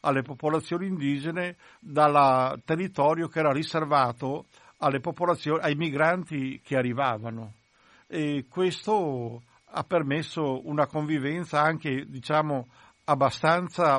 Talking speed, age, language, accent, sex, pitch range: 100 wpm, 60-79, Italian, native, male, 130-170 Hz